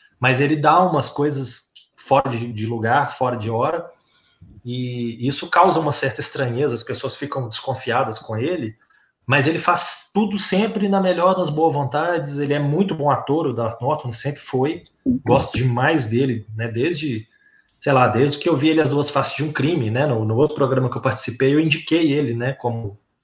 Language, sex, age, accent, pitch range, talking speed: Portuguese, male, 20-39, Brazilian, 120-150 Hz, 185 wpm